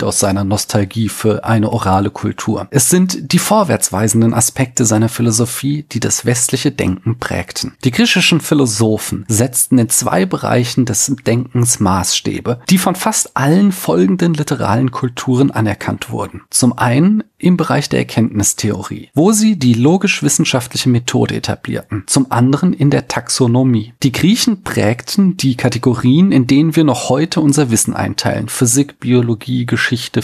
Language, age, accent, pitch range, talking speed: German, 40-59, German, 115-155 Hz, 140 wpm